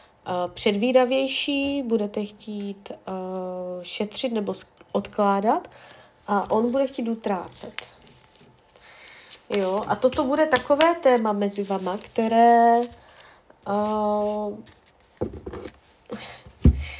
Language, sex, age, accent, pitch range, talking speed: Czech, female, 30-49, native, 200-250 Hz, 80 wpm